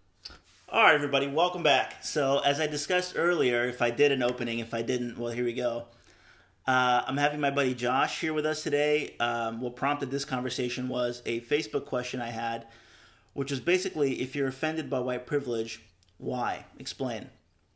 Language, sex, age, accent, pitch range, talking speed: English, male, 30-49, American, 115-140 Hz, 185 wpm